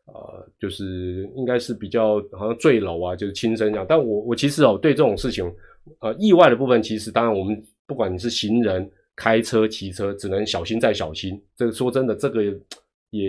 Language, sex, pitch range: Chinese, male, 95-125 Hz